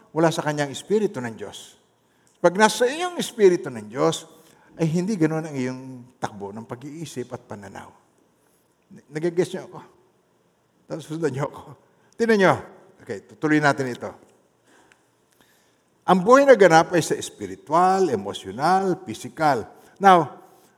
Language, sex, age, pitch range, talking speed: Filipino, male, 50-69, 130-180 Hz, 130 wpm